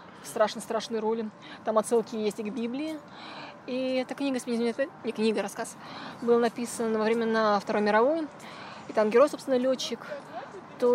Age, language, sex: 20-39, Russian, female